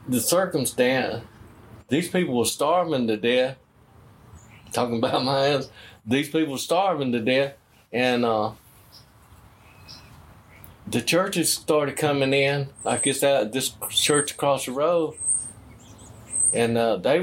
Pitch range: 110-140 Hz